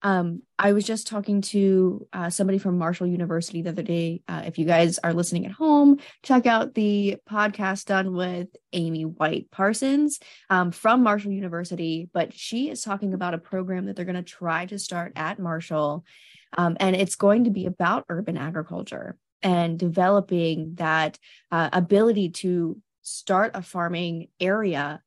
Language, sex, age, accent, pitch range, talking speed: English, female, 20-39, American, 165-195 Hz, 170 wpm